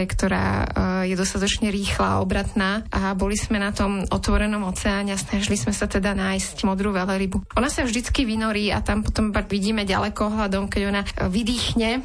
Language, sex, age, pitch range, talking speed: Slovak, female, 20-39, 195-225 Hz, 165 wpm